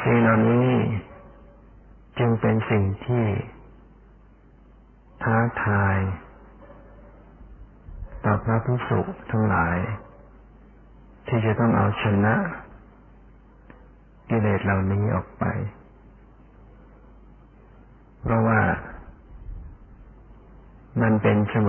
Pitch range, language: 100-115 Hz, Thai